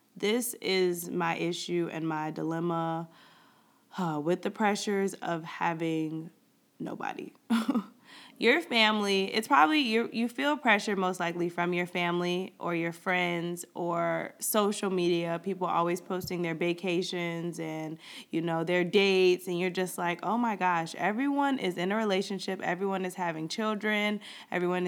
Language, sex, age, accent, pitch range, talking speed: English, female, 20-39, American, 175-230 Hz, 145 wpm